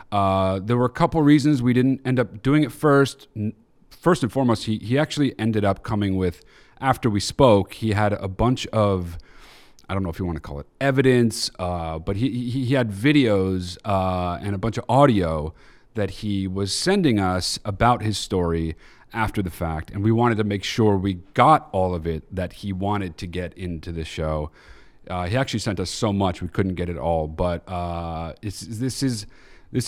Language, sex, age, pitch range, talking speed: English, male, 30-49, 90-125 Hz, 205 wpm